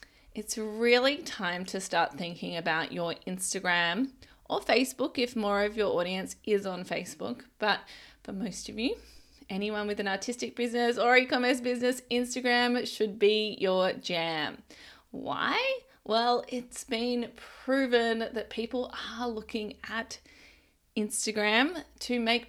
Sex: female